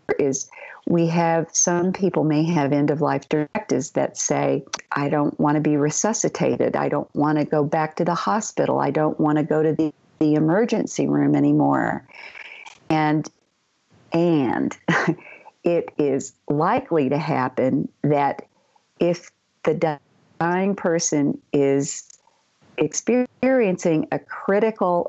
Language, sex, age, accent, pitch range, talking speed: English, female, 50-69, American, 150-180 Hz, 130 wpm